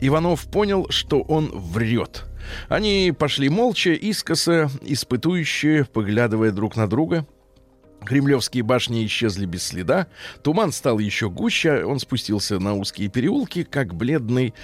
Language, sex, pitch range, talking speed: Russian, male, 115-165 Hz, 125 wpm